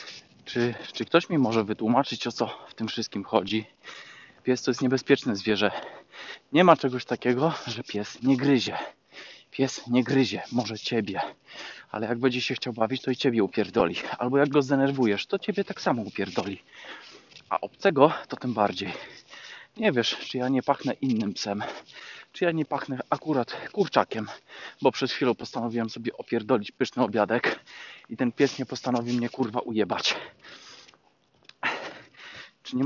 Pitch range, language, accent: 115-140 Hz, Polish, native